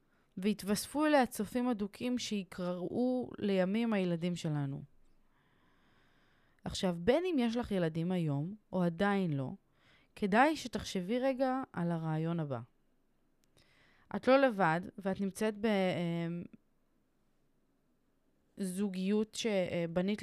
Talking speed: 90 wpm